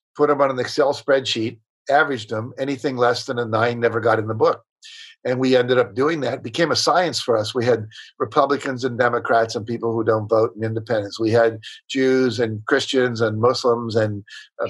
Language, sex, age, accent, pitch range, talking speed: English, male, 50-69, American, 115-140 Hz, 210 wpm